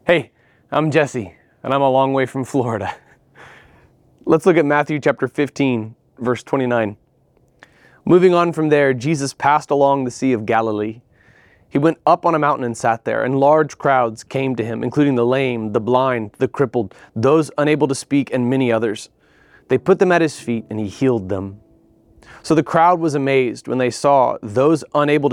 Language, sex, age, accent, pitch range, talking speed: English, male, 30-49, American, 115-145 Hz, 185 wpm